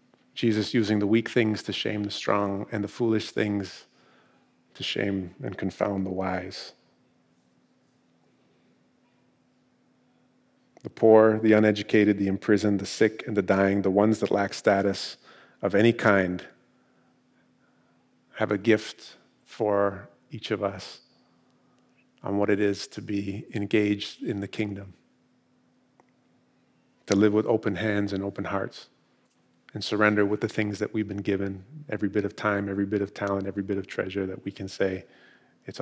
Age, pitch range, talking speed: 40-59, 100-110 Hz, 150 wpm